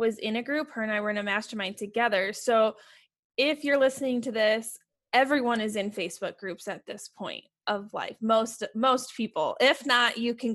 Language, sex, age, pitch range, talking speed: English, female, 20-39, 205-245 Hz, 200 wpm